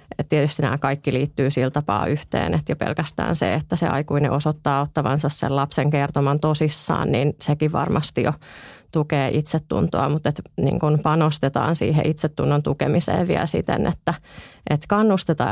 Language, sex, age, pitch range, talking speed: Finnish, female, 30-49, 145-165 Hz, 140 wpm